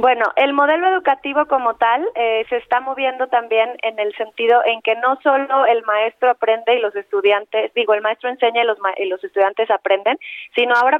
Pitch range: 215-250 Hz